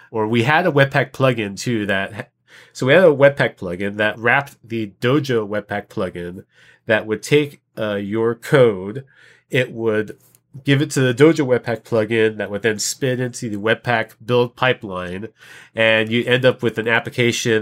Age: 30-49